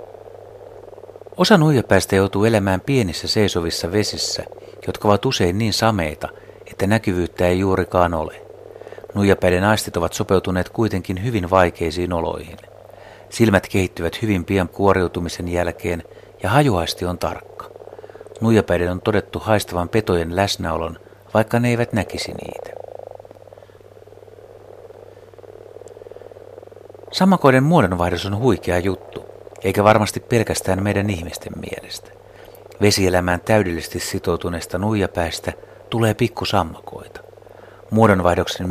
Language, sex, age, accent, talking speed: Finnish, male, 60-79, native, 100 wpm